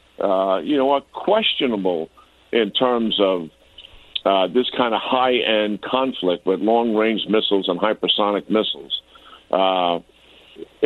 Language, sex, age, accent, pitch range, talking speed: English, male, 60-79, American, 95-120 Hz, 115 wpm